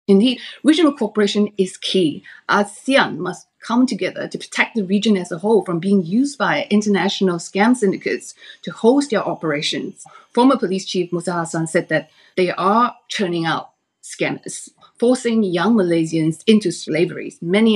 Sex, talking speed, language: female, 150 wpm, English